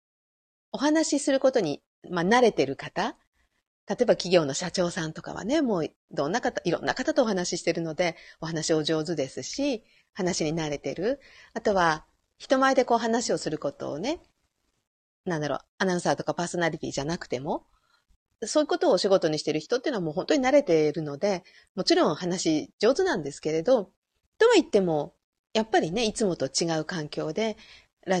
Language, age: Japanese, 40-59